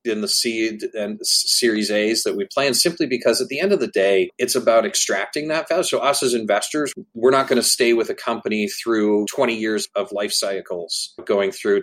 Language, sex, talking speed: English, male, 210 wpm